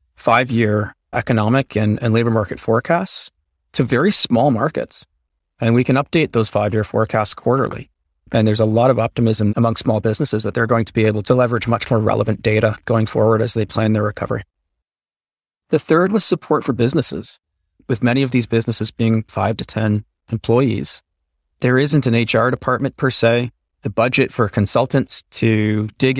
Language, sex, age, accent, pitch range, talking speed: English, male, 30-49, American, 105-125 Hz, 175 wpm